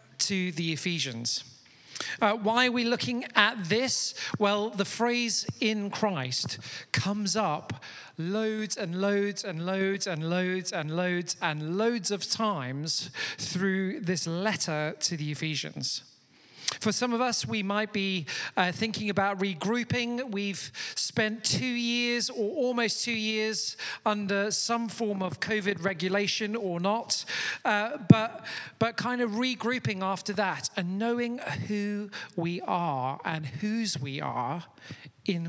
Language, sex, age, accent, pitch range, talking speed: English, male, 40-59, British, 175-220 Hz, 135 wpm